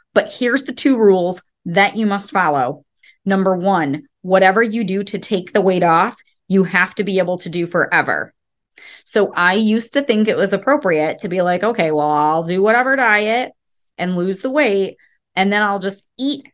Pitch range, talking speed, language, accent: 170-220 Hz, 190 wpm, English, American